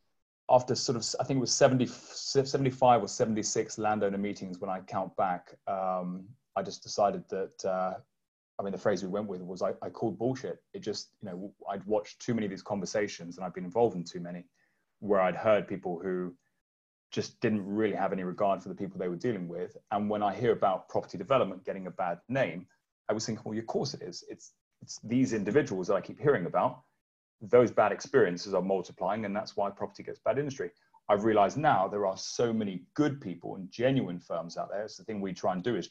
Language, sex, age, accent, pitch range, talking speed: English, male, 30-49, British, 95-120 Hz, 220 wpm